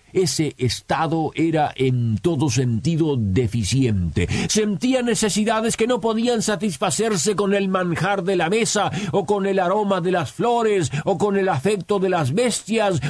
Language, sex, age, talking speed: Spanish, male, 50-69, 150 wpm